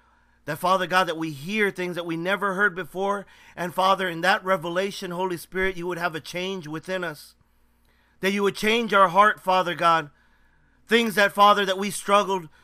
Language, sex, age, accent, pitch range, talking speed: English, male, 40-59, American, 155-190 Hz, 190 wpm